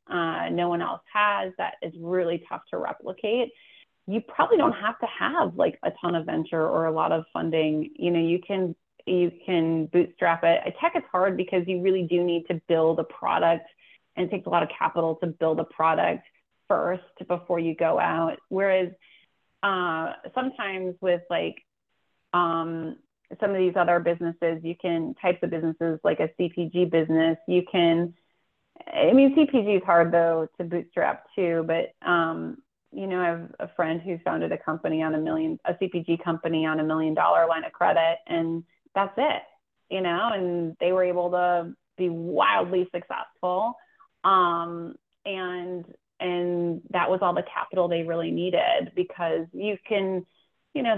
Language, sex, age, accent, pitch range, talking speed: English, female, 30-49, American, 165-185 Hz, 175 wpm